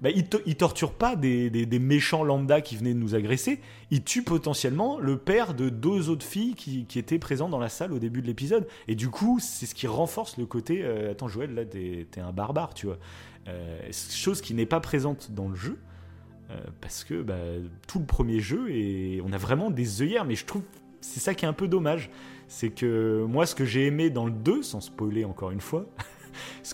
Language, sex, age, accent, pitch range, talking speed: French, male, 30-49, French, 110-160 Hz, 235 wpm